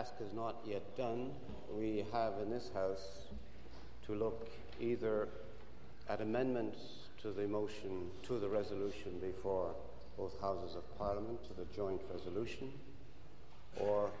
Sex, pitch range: male, 95-105 Hz